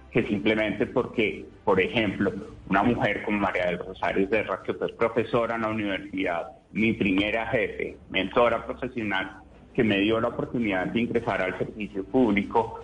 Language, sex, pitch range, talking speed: Spanish, male, 100-125 Hz, 155 wpm